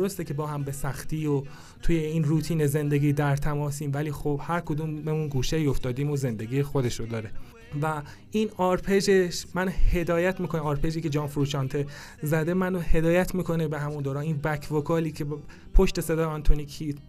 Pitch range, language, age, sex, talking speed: 145-165 Hz, Persian, 30-49, male, 170 wpm